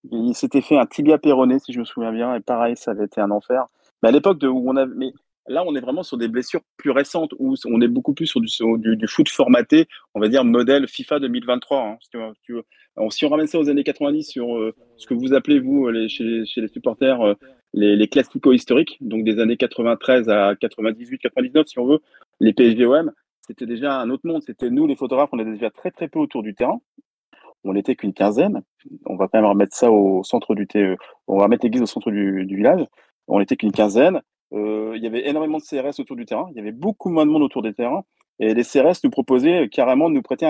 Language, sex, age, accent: French, male, 30-49, French